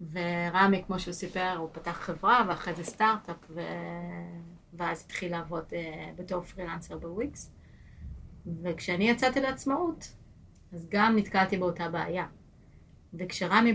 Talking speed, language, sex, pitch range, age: 120 wpm, Hebrew, female, 175-210 Hz, 30-49